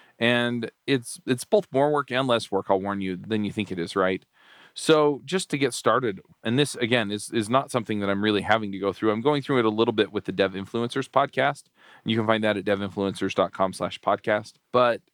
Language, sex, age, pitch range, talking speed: English, male, 40-59, 95-120 Hz, 230 wpm